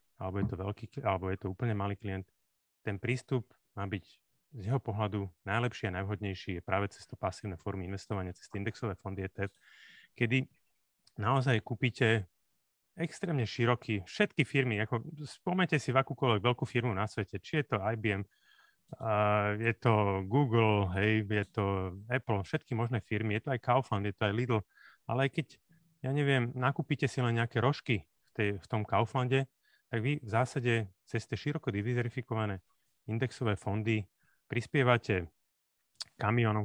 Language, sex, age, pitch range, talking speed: Slovak, male, 30-49, 105-130 Hz, 150 wpm